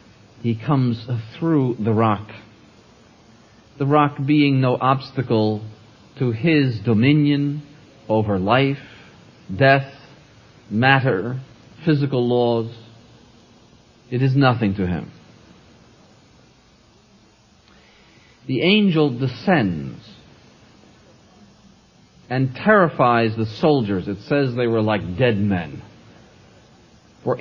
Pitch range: 110-130 Hz